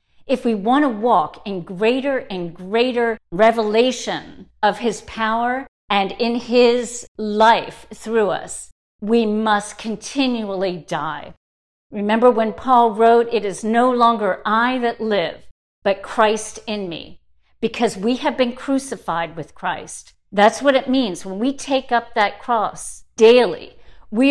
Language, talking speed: English, 140 wpm